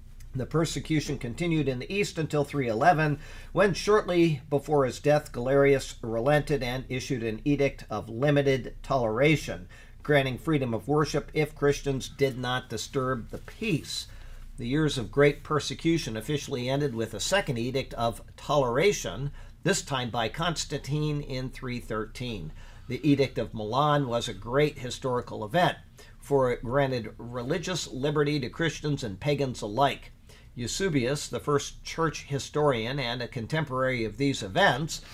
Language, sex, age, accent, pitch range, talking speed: English, male, 50-69, American, 120-145 Hz, 140 wpm